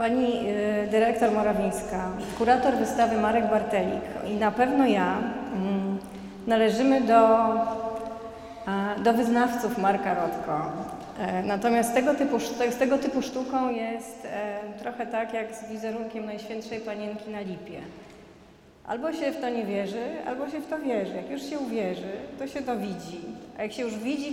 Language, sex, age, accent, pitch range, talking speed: Polish, female, 30-49, native, 210-235 Hz, 140 wpm